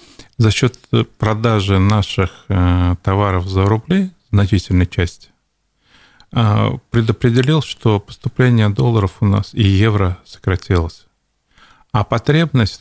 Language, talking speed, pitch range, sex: Russian, 95 wpm, 95-120 Hz, male